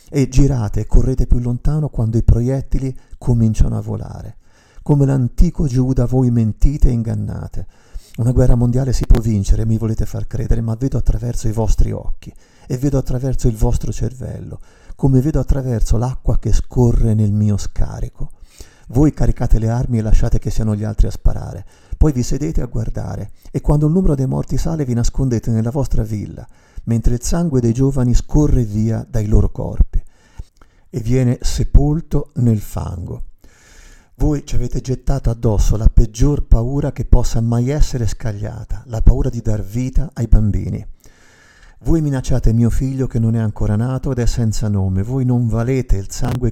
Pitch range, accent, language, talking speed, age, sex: 105-130 Hz, native, Italian, 170 wpm, 50-69, male